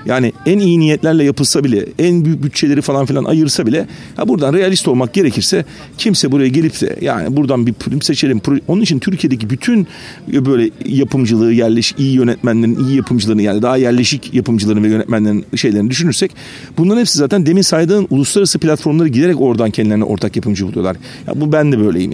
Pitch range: 120-175 Hz